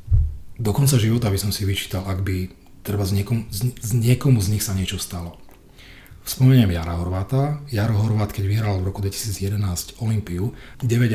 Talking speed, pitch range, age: 170 wpm, 95-115 Hz, 40-59